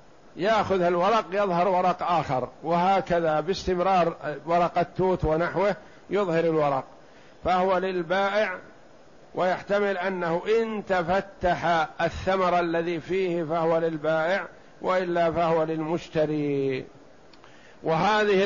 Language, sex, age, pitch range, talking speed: Arabic, male, 60-79, 165-195 Hz, 90 wpm